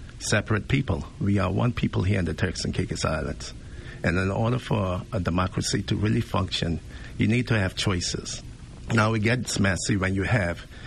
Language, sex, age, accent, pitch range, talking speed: English, male, 50-69, American, 85-110 Hz, 190 wpm